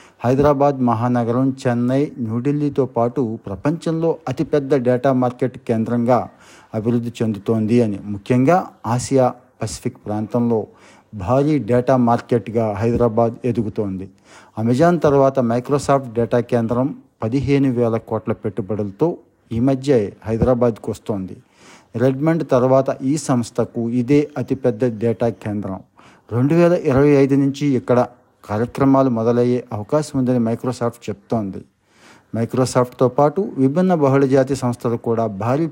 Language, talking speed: Telugu, 100 wpm